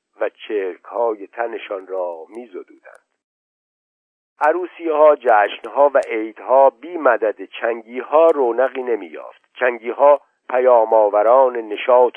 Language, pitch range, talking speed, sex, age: Persian, 115-145 Hz, 95 wpm, male, 50-69